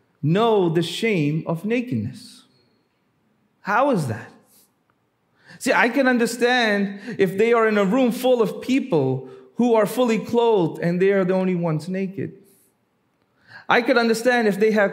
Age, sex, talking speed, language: 30-49, male, 155 wpm, English